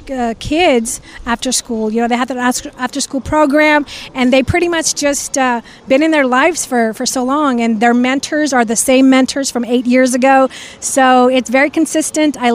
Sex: female